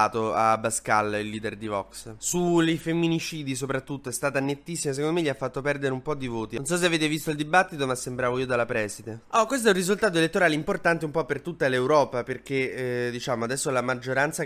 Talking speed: 215 wpm